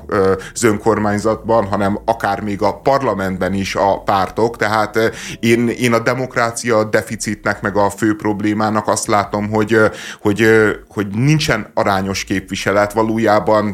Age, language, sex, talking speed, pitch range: 30-49, Hungarian, male, 120 wpm, 105-120 Hz